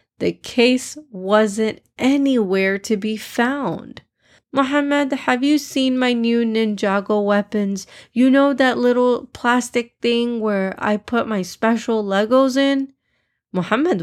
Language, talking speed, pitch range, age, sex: English, 125 wpm, 195-260 Hz, 20-39, female